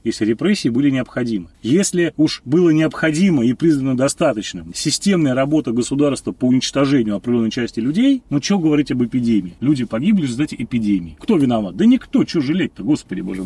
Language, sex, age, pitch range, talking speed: Russian, male, 30-49, 130-190 Hz, 160 wpm